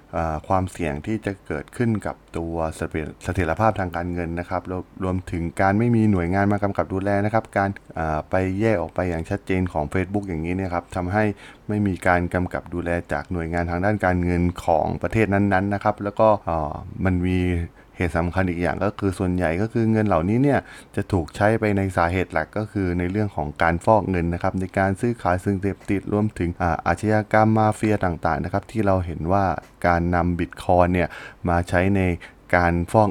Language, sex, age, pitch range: Thai, male, 20-39, 85-100 Hz